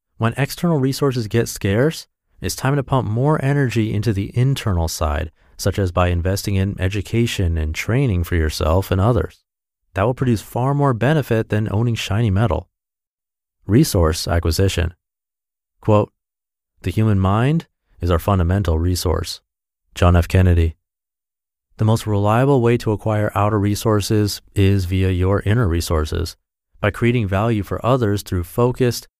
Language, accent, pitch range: English, American, 90-115 Hz